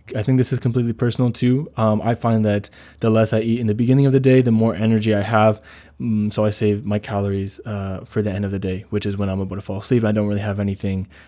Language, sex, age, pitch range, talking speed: English, male, 20-39, 105-120 Hz, 280 wpm